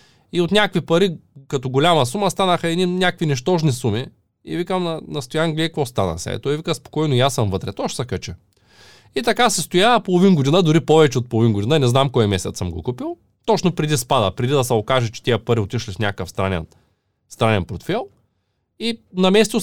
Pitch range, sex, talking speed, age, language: 105-160 Hz, male, 195 wpm, 20-39, Bulgarian